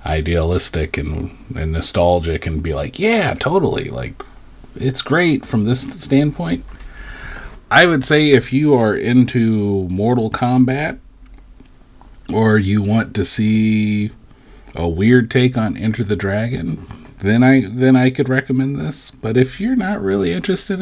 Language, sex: English, male